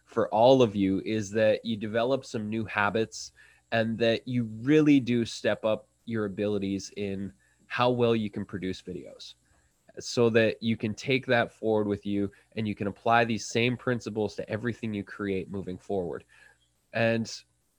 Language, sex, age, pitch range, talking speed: English, male, 20-39, 105-125 Hz, 170 wpm